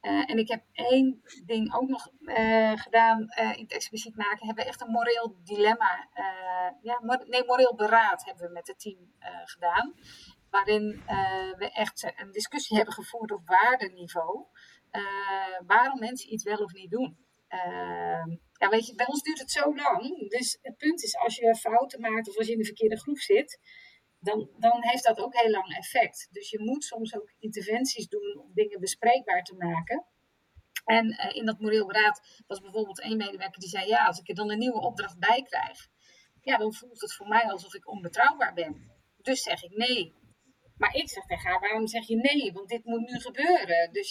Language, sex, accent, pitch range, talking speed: Dutch, female, Dutch, 205-255 Hz, 205 wpm